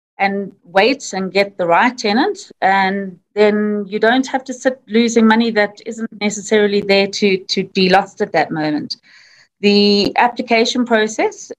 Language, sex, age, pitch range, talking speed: English, female, 30-49, 185-210 Hz, 155 wpm